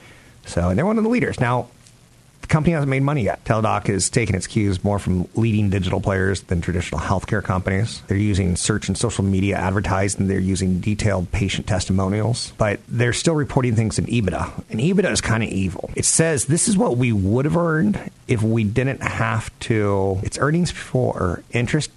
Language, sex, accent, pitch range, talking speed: English, male, American, 90-115 Hz, 195 wpm